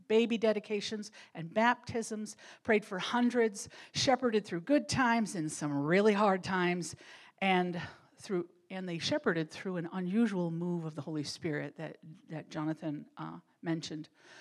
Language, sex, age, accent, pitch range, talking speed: English, female, 50-69, American, 170-230 Hz, 140 wpm